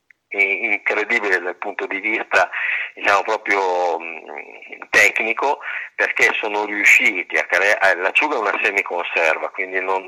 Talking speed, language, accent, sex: 120 wpm, Italian, native, male